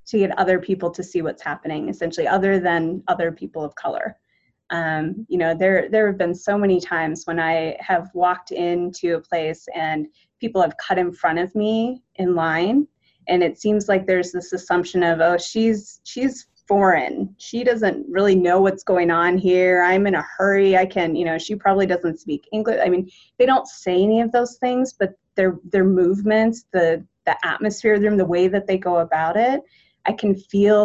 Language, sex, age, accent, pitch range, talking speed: English, female, 30-49, American, 175-220 Hz, 200 wpm